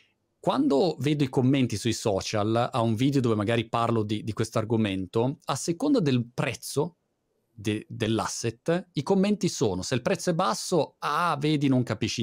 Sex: male